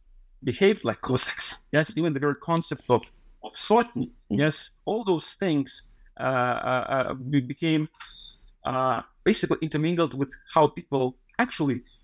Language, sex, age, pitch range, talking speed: English, male, 30-49, 125-155 Hz, 125 wpm